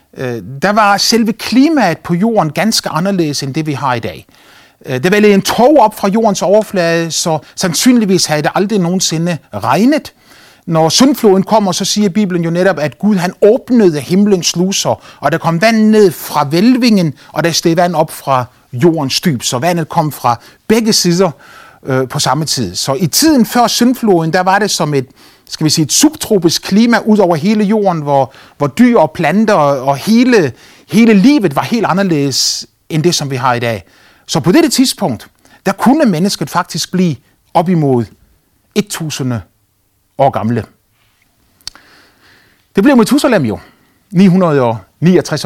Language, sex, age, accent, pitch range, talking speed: Danish, male, 30-49, native, 135-205 Hz, 170 wpm